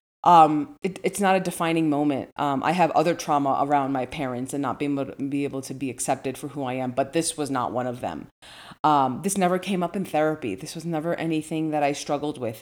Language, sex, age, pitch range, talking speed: English, female, 30-49, 140-175 Hz, 240 wpm